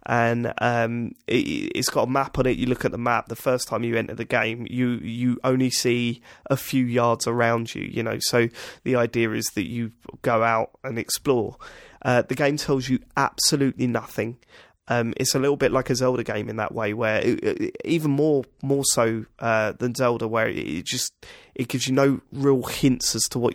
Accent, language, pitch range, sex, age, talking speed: British, English, 115-135 Hz, male, 20-39, 205 wpm